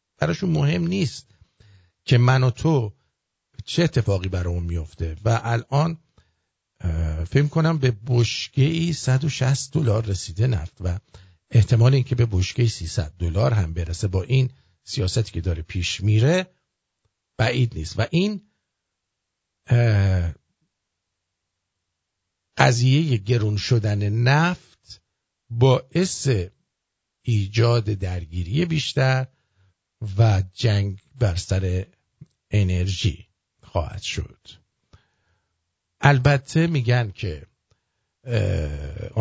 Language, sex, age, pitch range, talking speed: English, male, 50-69, 95-130 Hz, 90 wpm